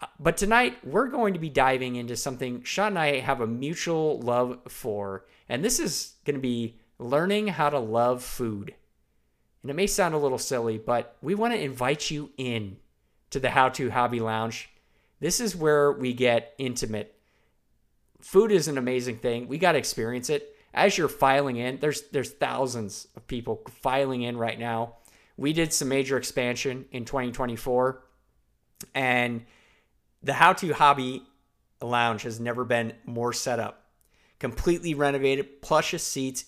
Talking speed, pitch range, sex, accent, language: 165 wpm, 120-145 Hz, male, American, English